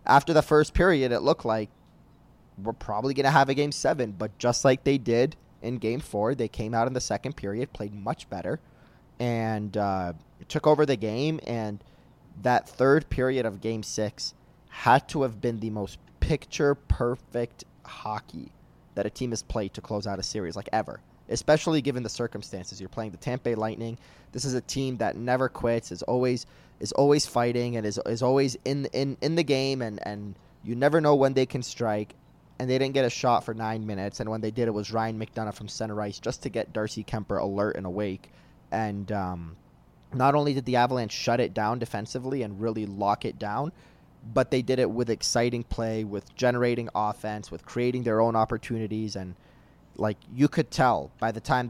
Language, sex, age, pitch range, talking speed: English, male, 20-39, 105-130 Hz, 200 wpm